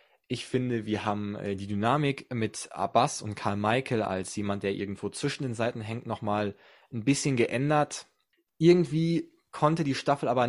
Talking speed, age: 160 wpm, 20-39